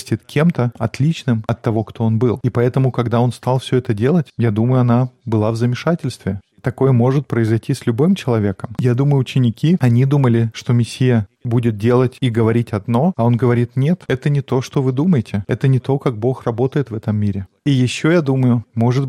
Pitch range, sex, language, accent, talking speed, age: 115-135 Hz, male, Russian, native, 200 wpm, 20-39